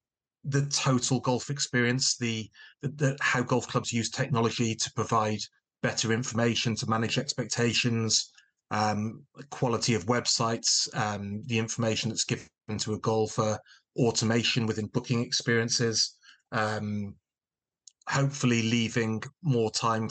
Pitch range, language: 110-125 Hz, English